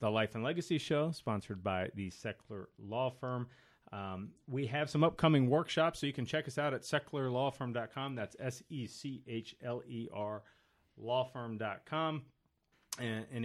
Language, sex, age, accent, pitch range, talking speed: English, male, 30-49, American, 100-130 Hz, 135 wpm